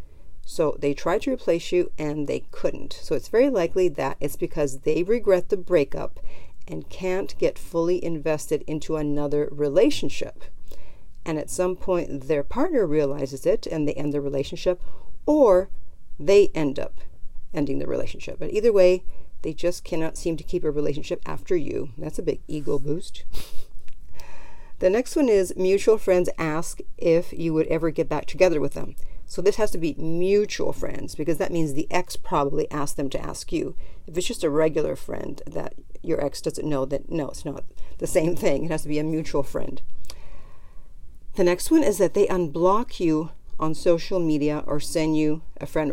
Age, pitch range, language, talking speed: 50-69, 145-180 Hz, English, 185 wpm